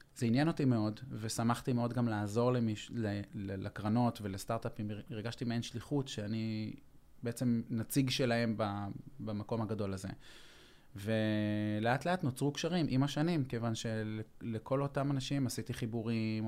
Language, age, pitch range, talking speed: Hebrew, 20-39, 115-140 Hz, 120 wpm